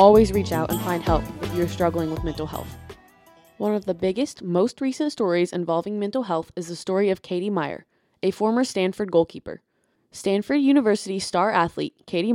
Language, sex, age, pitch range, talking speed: English, female, 20-39, 165-195 Hz, 180 wpm